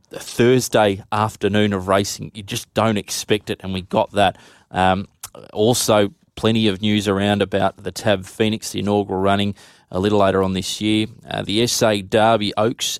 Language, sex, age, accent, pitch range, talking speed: English, male, 20-39, Australian, 95-110 Hz, 175 wpm